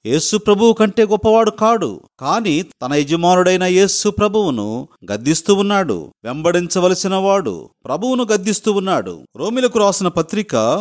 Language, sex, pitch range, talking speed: Telugu, male, 160-210 Hz, 105 wpm